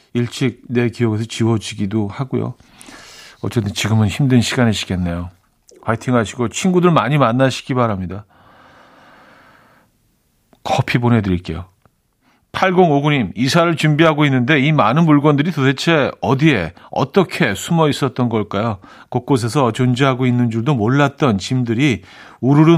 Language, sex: Korean, male